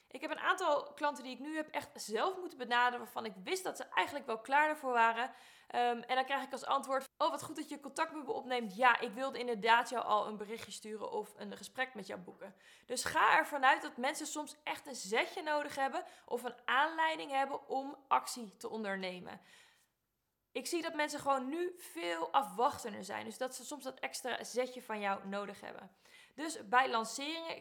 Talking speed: 210 wpm